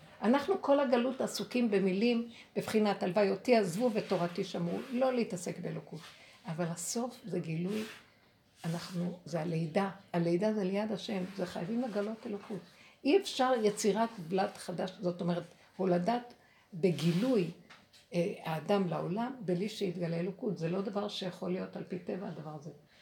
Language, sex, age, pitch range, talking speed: Hebrew, female, 60-79, 180-235 Hz, 140 wpm